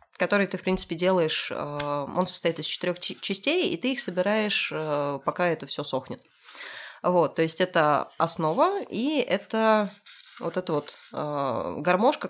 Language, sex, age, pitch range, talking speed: Russian, female, 20-39, 160-195 Hz, 140 wpm